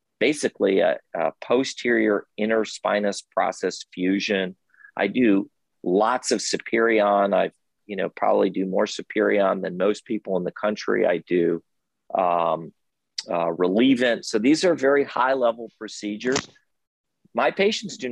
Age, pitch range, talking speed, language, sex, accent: 40-59, 105-125 Hz, 130 wpm, English, male, American